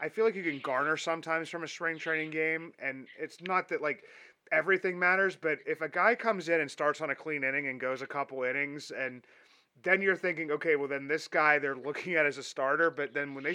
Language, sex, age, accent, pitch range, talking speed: English, male, 30-49, American, 135-165 Hz, 245 wpm